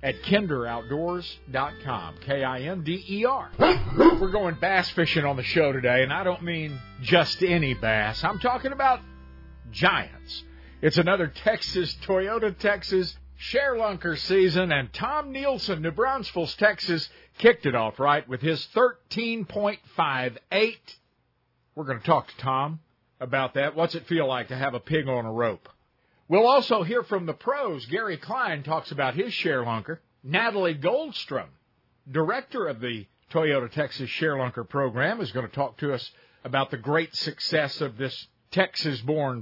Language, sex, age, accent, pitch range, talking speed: English, male, 50-69, American, 130-195 Hz, 150 wpm